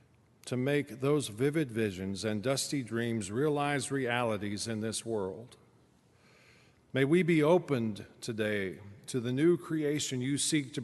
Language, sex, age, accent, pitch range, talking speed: English, male, 50-69, American, 110-140 Hz, 140 wpm